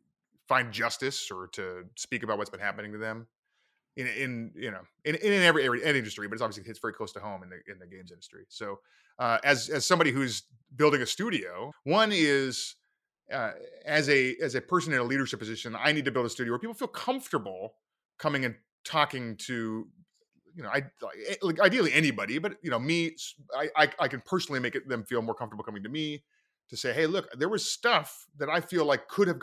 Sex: male